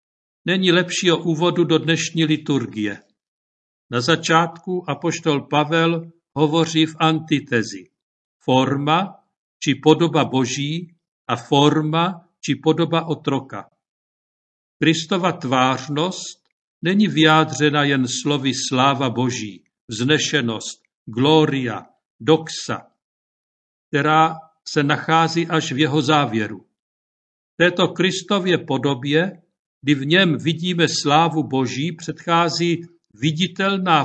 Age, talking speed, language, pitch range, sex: 50-69, 90 wpm, Czech, 140-170 Hz, male